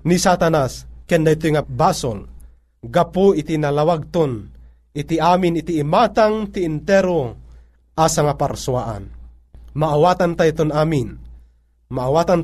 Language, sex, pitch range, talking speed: Filipino, male, 110-170 Hz, 100 wpm